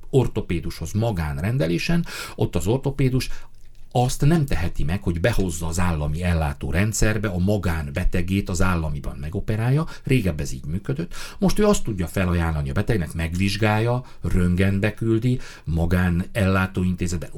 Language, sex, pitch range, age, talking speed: Hungarian, male, 90-130 Hz, 60-79, 120 wpm